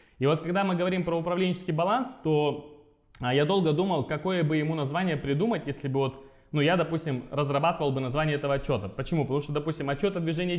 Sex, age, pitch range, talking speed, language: male, 20-39, 135-180 Hz, 200 wpm, Russian